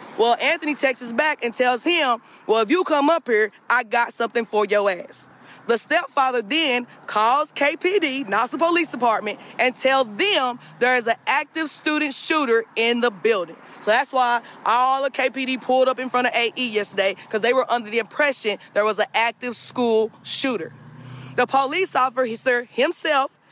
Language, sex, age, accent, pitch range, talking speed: English, female, 20-39, American, 235-310 Hz, 180 wpm